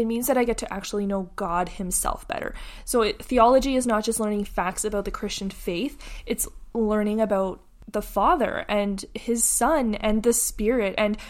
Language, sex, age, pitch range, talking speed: English, female, 20-39, 195-225 Hz, 180 wpm